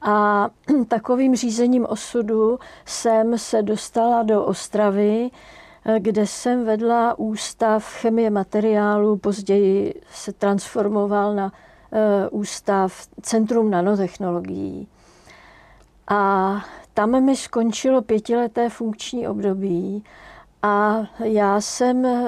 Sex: female